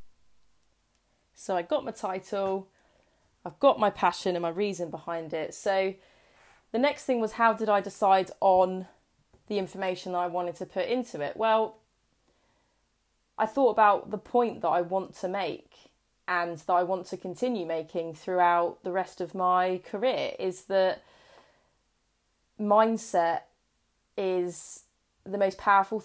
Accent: British